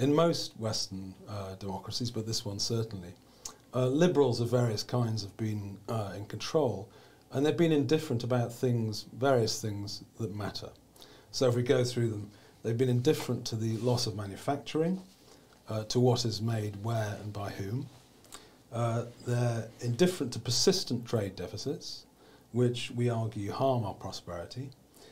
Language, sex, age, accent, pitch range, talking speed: English, male, 40-59, British, 105-125 Hz, 155 wpm